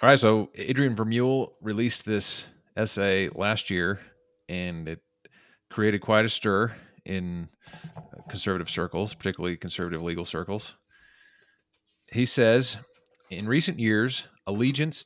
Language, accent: English, American